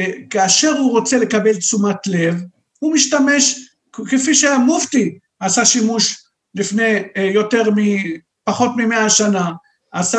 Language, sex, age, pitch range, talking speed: Hebrew, male, 50-69, 210-265 Hz, 105 wpm